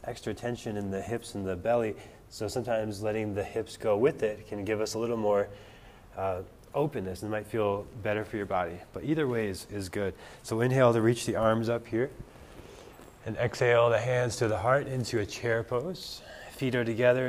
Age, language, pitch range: 20-39, English, 105-125 Hz